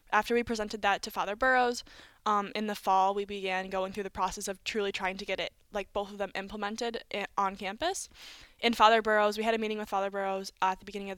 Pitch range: 200-250 Hz